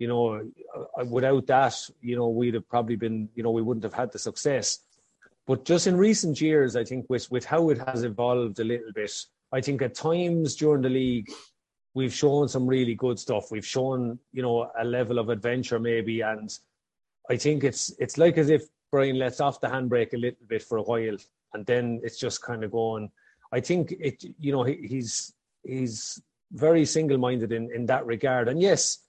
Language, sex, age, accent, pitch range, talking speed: English, male, 30-49, Irish, 115-135 Hz, 205 wpm